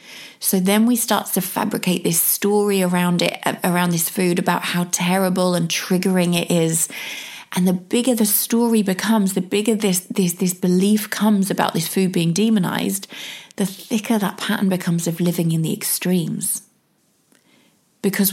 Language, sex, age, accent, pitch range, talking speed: English, female, 30-49, British, 175-210 Hz, 160 wpm